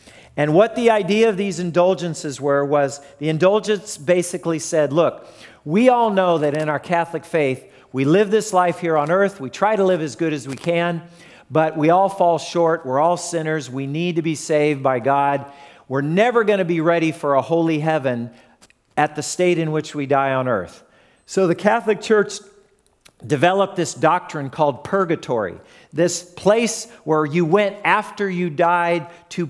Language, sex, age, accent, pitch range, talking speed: English, male, 50-69, American, 150-190 Hz, 185 wpm